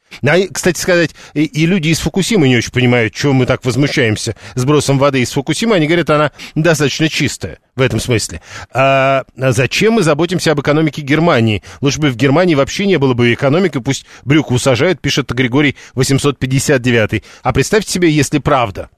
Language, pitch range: Russian, 125-155 Hz